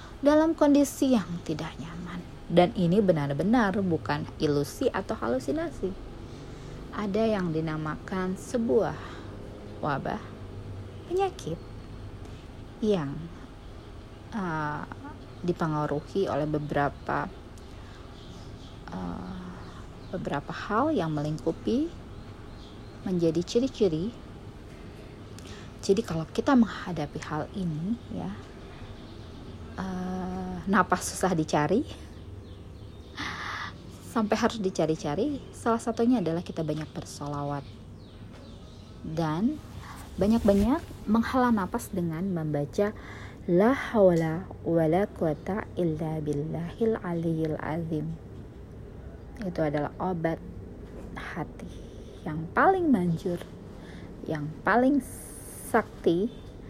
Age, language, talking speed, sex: 30-49, Indonesian, 75 wpm, female